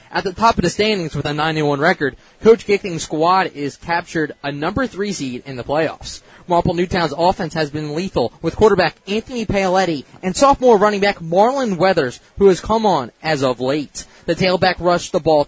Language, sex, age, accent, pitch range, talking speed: English, male, 20-39, American, 160-200 Hz, 195 wpm